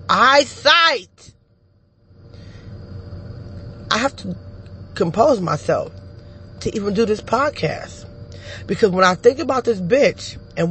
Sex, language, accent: female, English, American